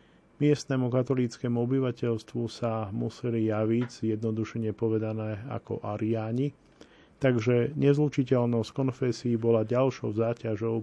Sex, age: male, 40-59